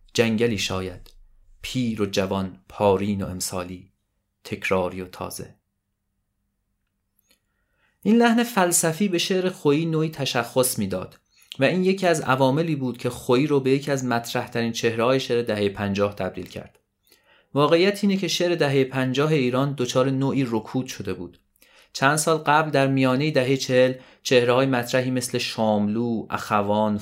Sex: male